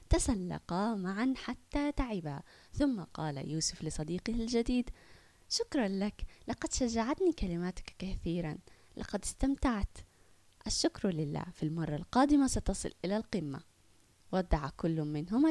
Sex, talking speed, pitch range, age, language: female, 110 wpm, 170-260 Hz, 20-39, Arabic